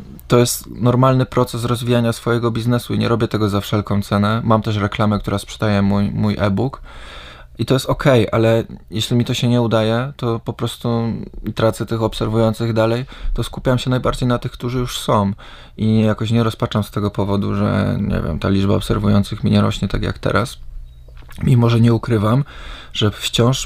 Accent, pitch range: native, 100-115 Hz